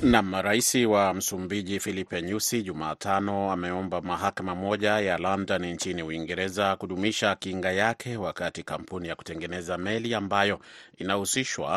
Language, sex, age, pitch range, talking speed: Swahili, male, 30-49, 90-105 Hz, 120 wpm